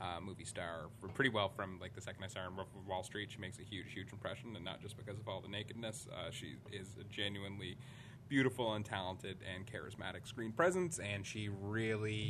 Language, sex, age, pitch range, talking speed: English, male, 20-39, 100-120 Hz, 225 wpm